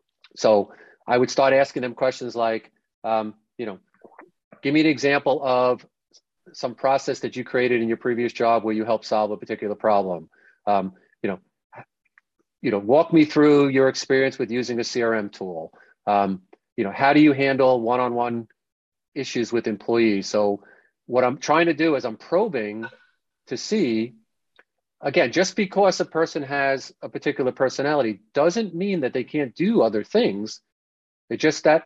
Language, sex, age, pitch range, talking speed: English, male, 40-59, 110-150 Hz, 170 wpm